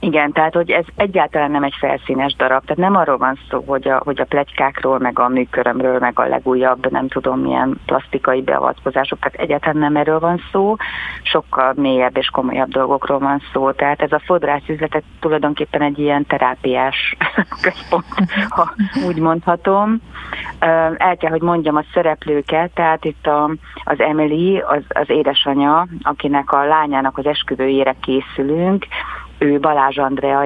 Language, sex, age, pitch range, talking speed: Hungarian, female, 30-49, 135-165 Hz, 150 wpm